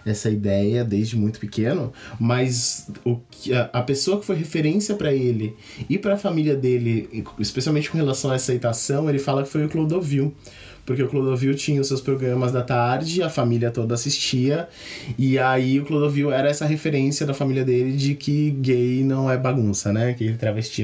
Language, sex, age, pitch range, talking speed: Portuguese, male, 20-39, 120-150 Hz, 185 wpm